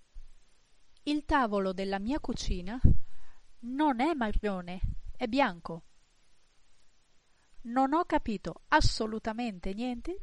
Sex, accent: female, Italian